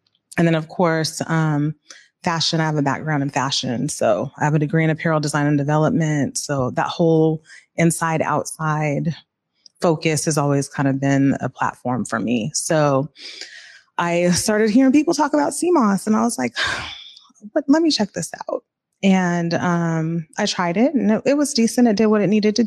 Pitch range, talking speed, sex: 160-215 Hz, 185 wpm, female